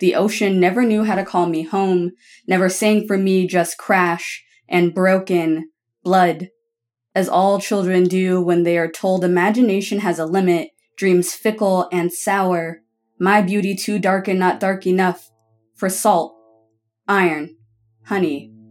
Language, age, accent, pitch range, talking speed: English, 20-39, American, 165-200 Hz, 150 wpm